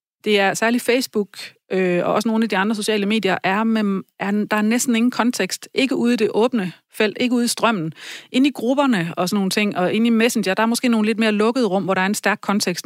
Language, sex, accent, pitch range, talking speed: Danish, female, native, 180-225 Hz, 260 wpm